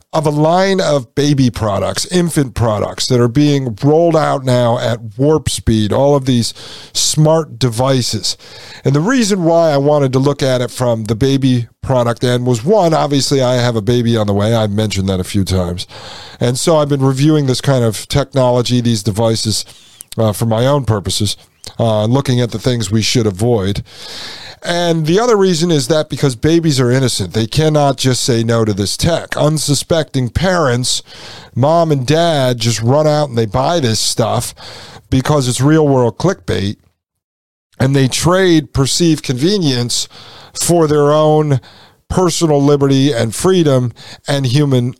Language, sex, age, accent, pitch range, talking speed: English, male, 50-69, American, 115-150 Hz, 170 wpm